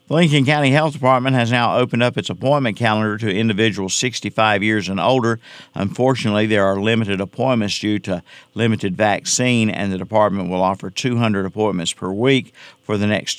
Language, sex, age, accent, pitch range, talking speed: English, male, 50-69, American, 95-115 Hz, 175 wpm